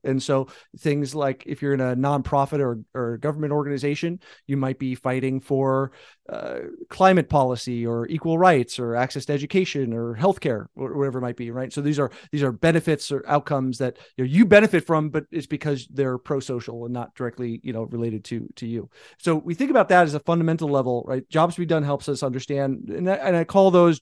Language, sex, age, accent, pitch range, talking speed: English, male, 30-49, American, 130-165 Hz, 220 wpm